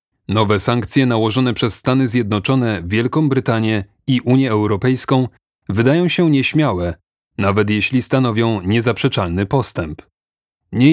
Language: Polish